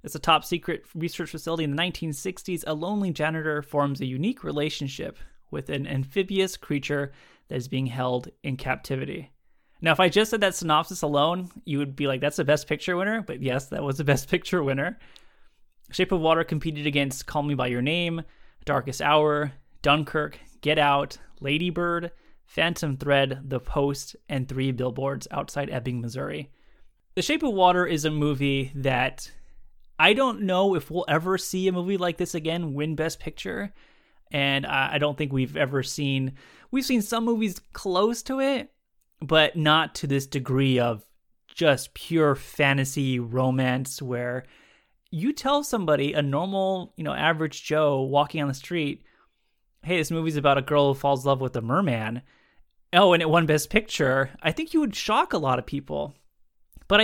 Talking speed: 175 wpm